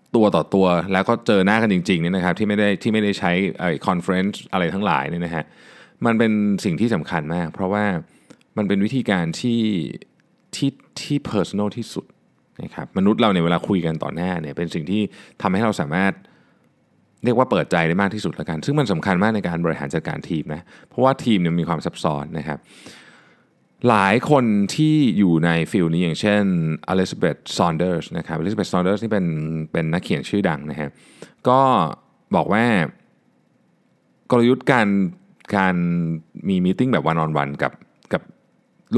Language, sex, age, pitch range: Thai, male, 20-39, 85-115 Hz